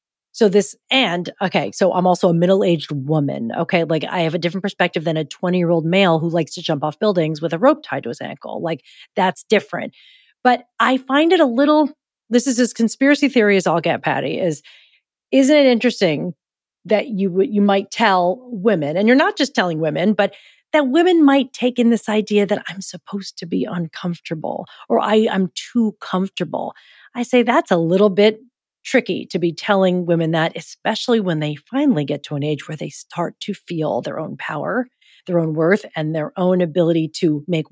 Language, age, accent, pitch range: English, 40-59, American, 170-240 Hz